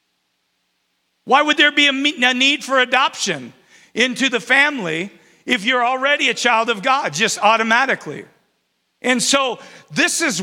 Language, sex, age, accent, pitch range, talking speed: English, male, 50-69, American, 205-260 Hz, 150 wpm